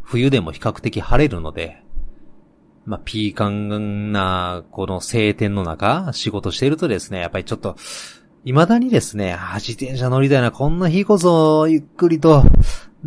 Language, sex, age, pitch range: Japanese, male, 30-49, 95-135 Hz